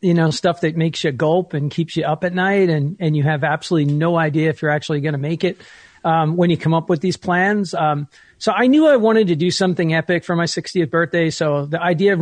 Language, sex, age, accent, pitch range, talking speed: English, male, 40-59, American, 150-180 Hz, 260 wpm